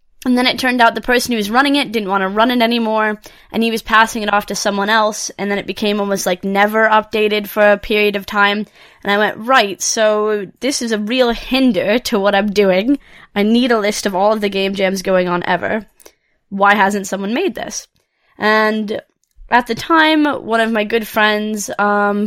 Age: 20-39